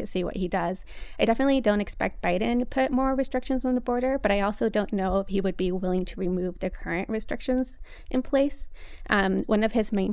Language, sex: English, female